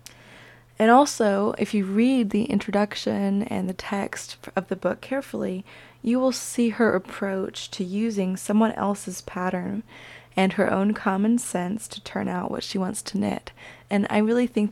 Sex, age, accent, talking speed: female, 20-39, American, 165 wpm